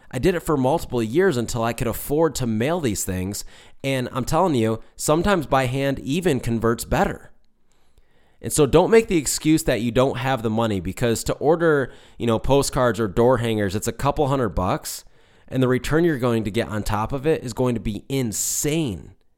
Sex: male